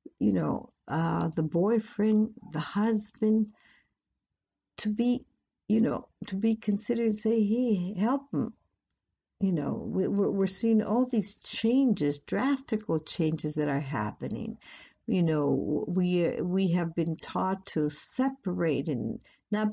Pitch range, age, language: 155-220 Hz, 60-79, English